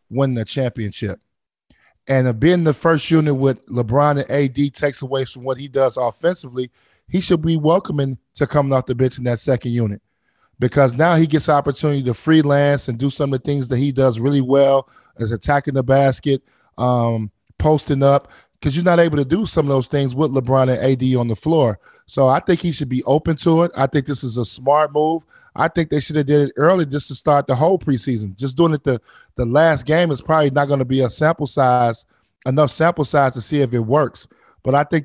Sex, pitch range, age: male, 130-150 Hz, 20-39